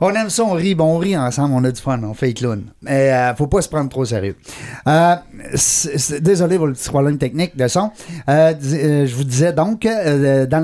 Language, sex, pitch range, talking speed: French, male, 115-155 Hz, 215 wpm